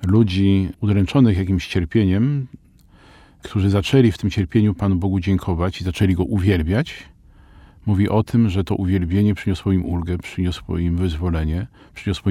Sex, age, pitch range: male, 50-69, 95-110 Hz